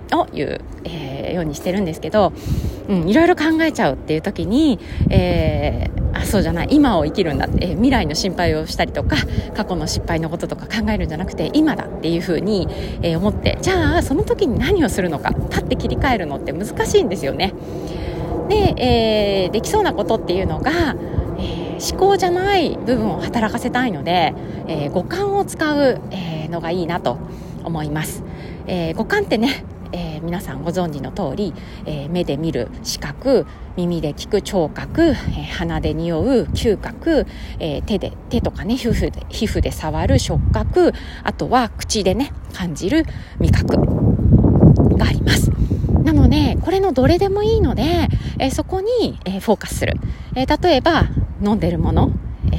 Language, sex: Japanese, female